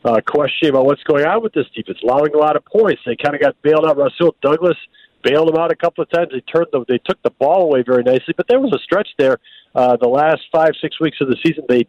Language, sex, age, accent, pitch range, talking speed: English, male, 50-69, American, 155-210 Hz, 280 wpm